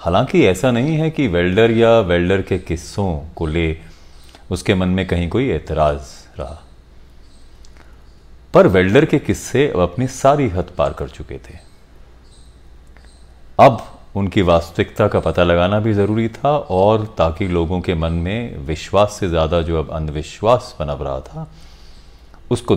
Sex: male